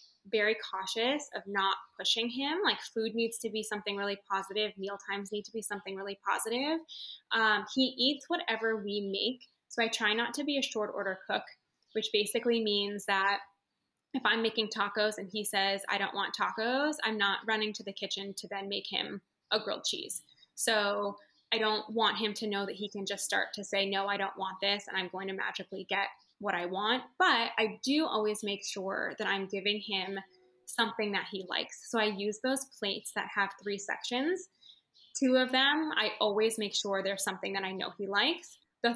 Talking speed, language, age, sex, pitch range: 205 wpm, English, 10-29, female, 200-230 Hz